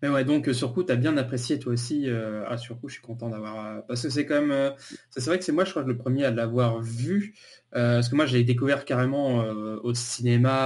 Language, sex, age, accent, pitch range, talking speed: French, male, 20-39, French, 120-140 Hz, 250 wpm